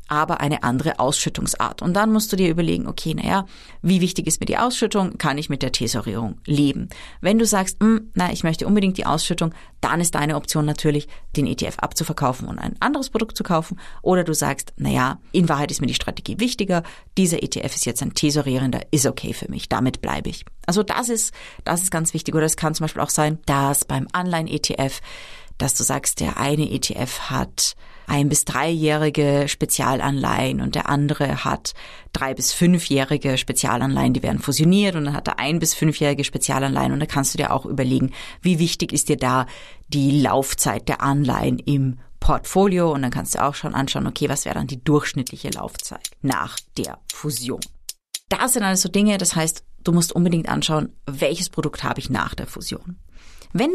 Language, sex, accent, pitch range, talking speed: German, female, German, 140-185 Hz, 190 wpm